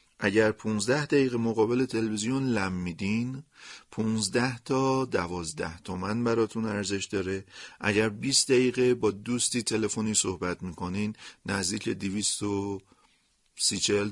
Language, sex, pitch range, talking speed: Persian, male, 95-120 Hz, 110 wpm